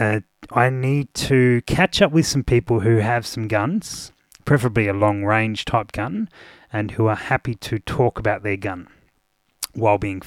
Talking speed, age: 170 wpm, 30-49